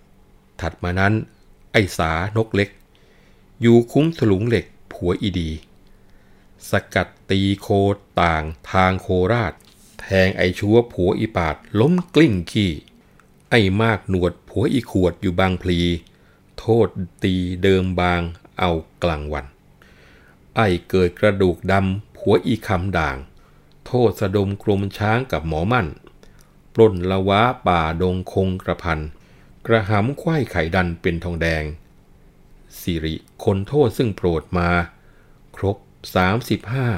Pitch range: 85-105 Hz